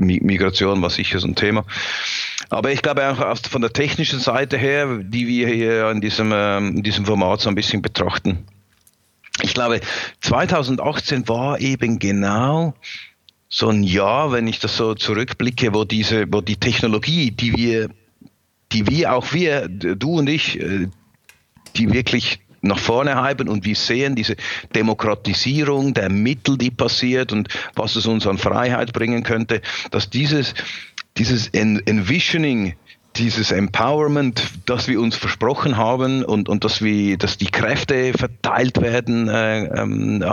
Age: 50-69